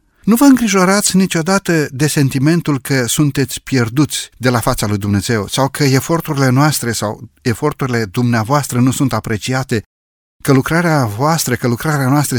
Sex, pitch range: male, 120-165 Hz